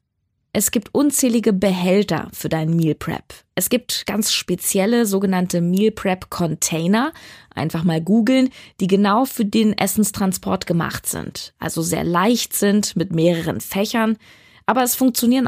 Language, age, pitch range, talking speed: German, 20-39, 180-225 Hz, 140 wpm